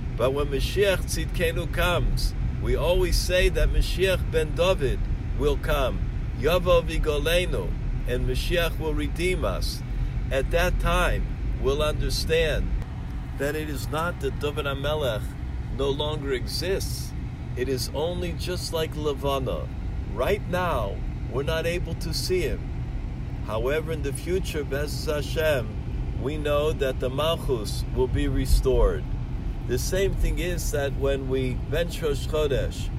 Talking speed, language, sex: 135 wpm, English, male